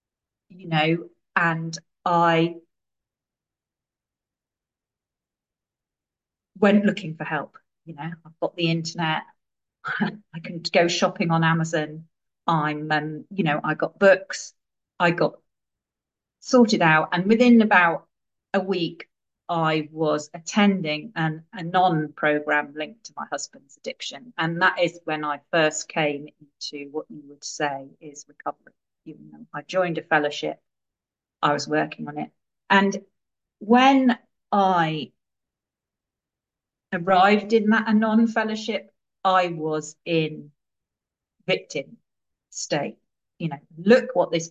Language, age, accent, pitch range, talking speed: English, 40-59, British, 155-195 Hz, 120 wpm